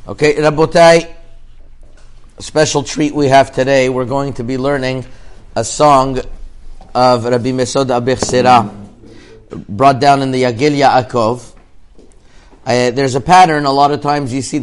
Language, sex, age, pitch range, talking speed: English, male, 50-69, 125-155 Hz, 145 wpm